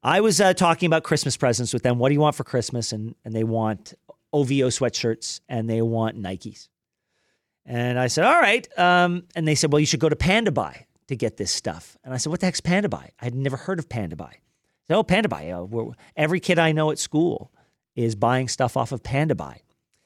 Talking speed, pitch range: 220 wpm, 125-180 Hz